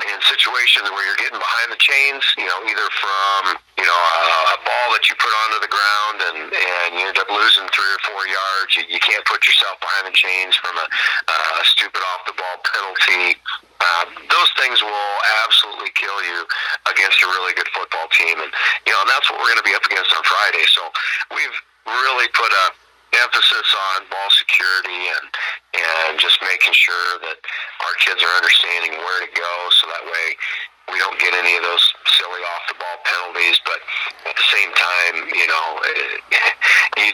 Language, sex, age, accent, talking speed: English, male, 40-59, American, 185 wpm